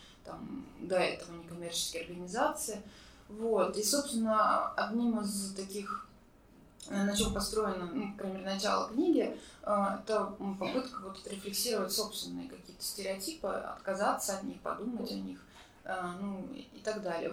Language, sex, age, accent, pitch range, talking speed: Russian, female, 20-39, native, 190-230 Hz, 115 wpm